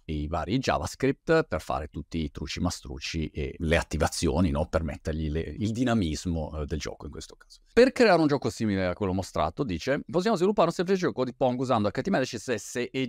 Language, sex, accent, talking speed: Italian, male, native, 195 wpm